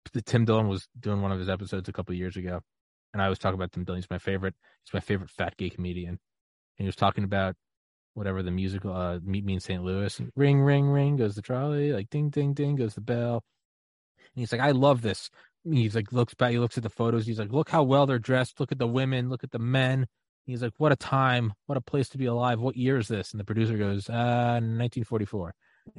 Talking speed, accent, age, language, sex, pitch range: 255 wpm, American, 20-39, English, male, 105-140 Hz